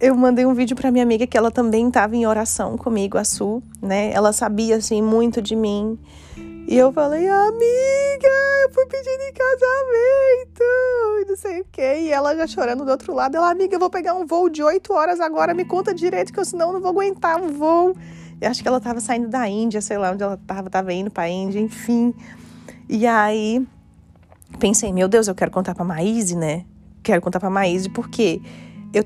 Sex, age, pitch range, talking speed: female, 20-39, 200-295 Hz, 210 wpm